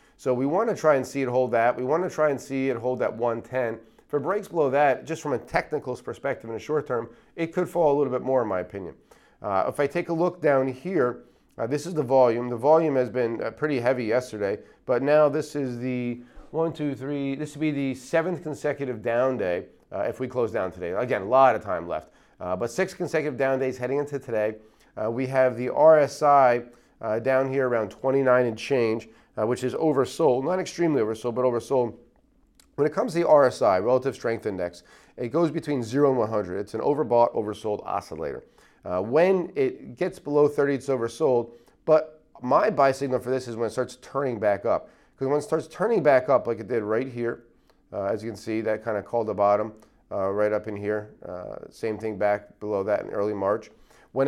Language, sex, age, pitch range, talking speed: English, male, 40-59, 115-150 Hz, 220 wpm